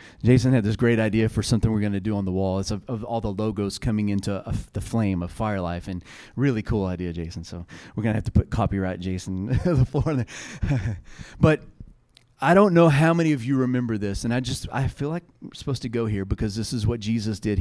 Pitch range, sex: 110-140 Hz, male